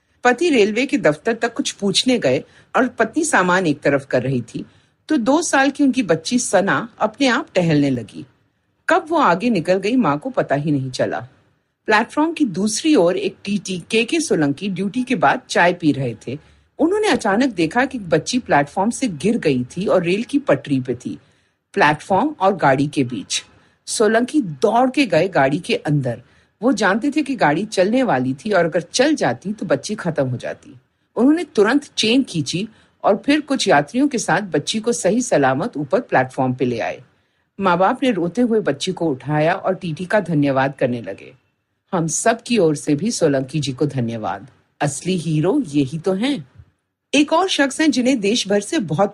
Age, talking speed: 50-69, 190 wpm